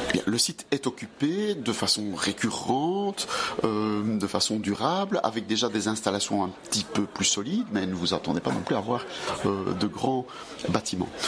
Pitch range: 100-135 Hz